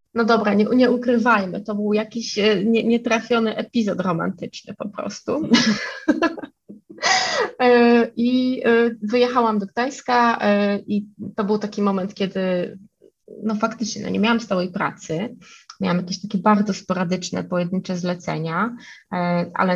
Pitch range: 185-225 Hz